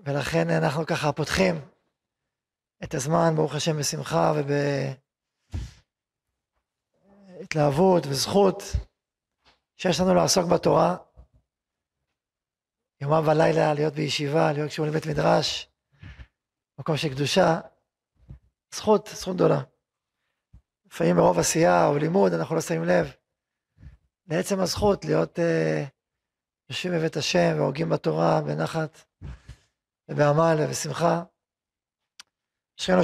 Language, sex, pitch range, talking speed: Hebrew, male, 145-180 Hz, 95 wpm